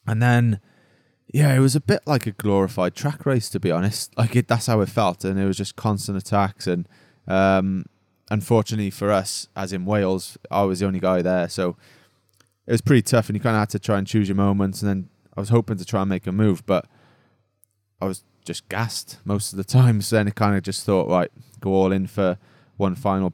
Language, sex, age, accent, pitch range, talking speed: English, male, 20-39, British, 95-115 Hz, 230 wpm